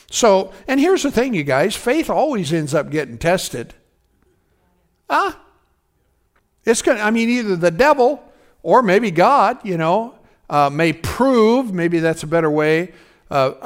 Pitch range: 155-220 Hz